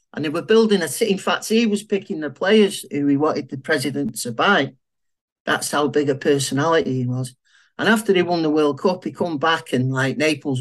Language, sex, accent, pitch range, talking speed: English, male, British, 140-195 Hz, 225 wpm